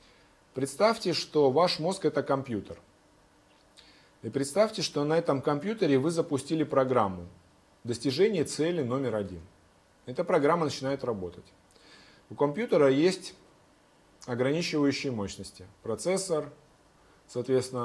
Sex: male